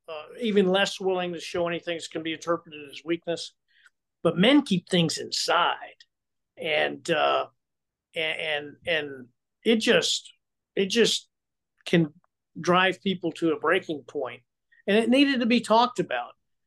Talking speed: 140 wpm